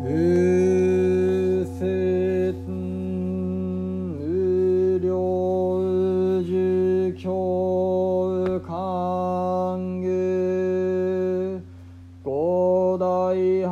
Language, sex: Japanese, male